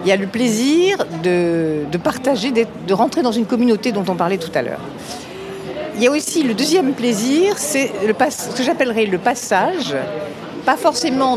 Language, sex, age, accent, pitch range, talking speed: French, female, 50-69, French, 170-245 Hz, 195 wpm